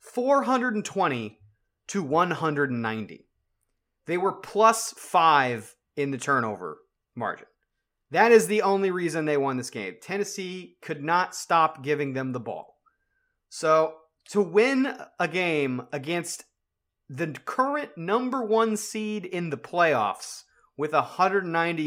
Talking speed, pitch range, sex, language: 120 wpm, 135-180 Hz, male, English